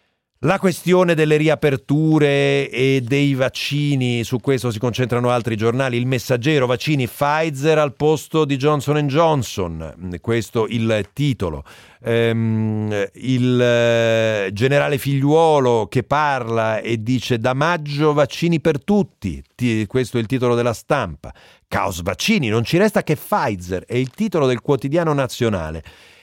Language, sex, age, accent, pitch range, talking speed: Italian, male, 40-59, native, 120-155 Hz, 130 wpm